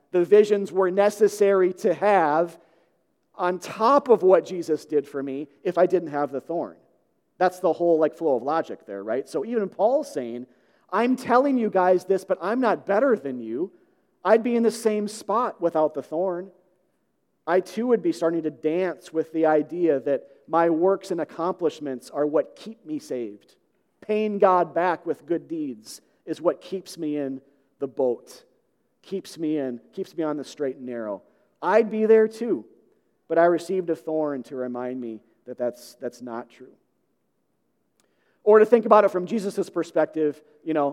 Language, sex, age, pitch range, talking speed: English, male, 40-59, 155-210 Hz, 180 wpm